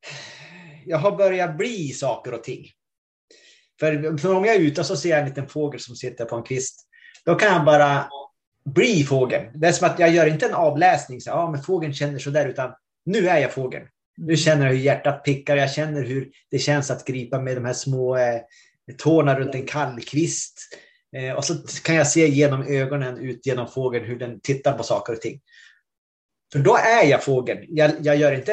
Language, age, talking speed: Swedish, 30-49, 200 wpm